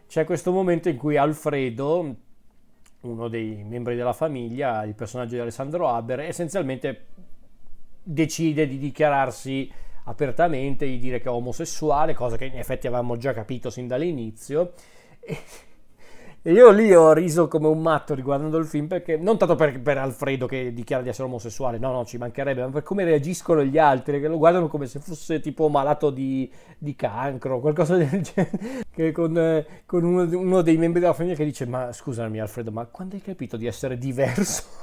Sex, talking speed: male, 180 wpm